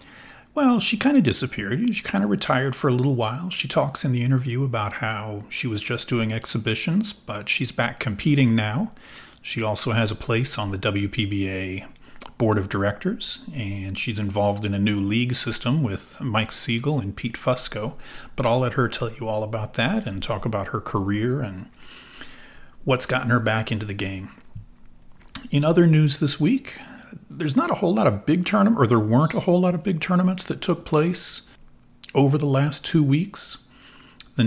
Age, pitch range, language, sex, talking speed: 40-59, 105-145 Hz, English, male, 190 wpm